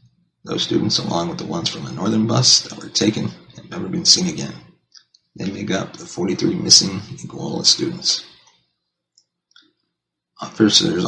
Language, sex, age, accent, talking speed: English, male, 30-49, American, 145 wpm